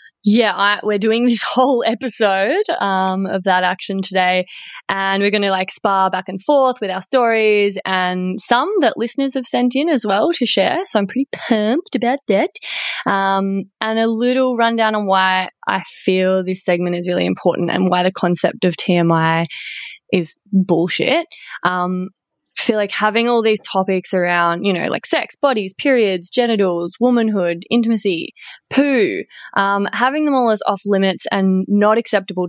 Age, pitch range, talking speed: 20-39, 185-235 Hz, 170 wpm